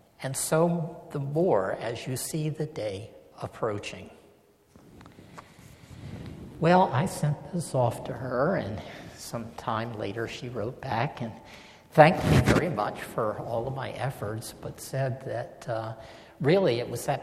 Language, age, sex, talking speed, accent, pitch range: English, 60-79, male, 145 wpm, American, 115-170 Hz